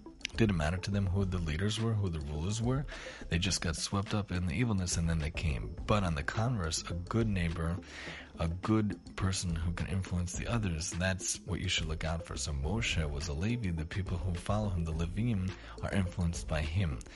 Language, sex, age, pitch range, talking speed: English, male, 30-49, 85-100 Hz, 215 wpm